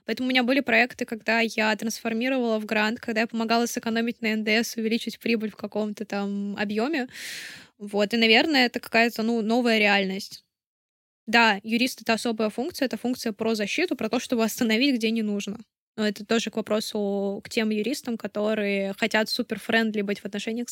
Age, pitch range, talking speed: 10-29, 215-245 Hz, 170 wpm